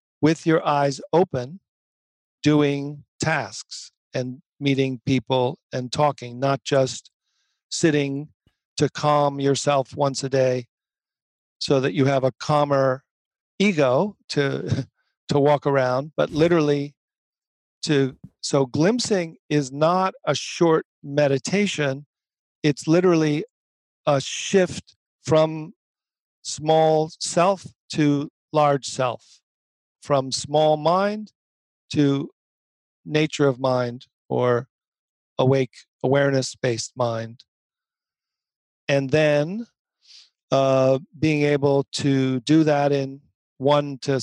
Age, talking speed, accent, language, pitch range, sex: 50-69, 100 wpm, American, English, 135-160 Hz, male